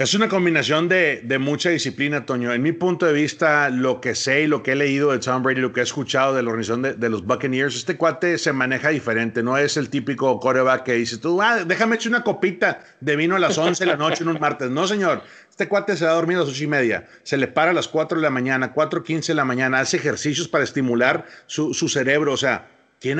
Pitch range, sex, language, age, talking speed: 130-185 Hz, male, Spanish, 40-59, 255 wpm